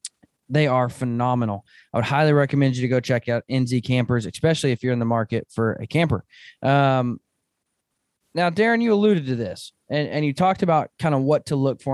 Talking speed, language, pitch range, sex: 205 wpm, English, 125-150 Hz, male